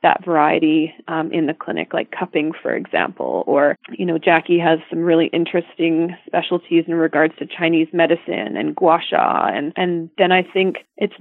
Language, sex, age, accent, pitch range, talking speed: English, female, 30-49, American, 160-185 Hz, 175 wpm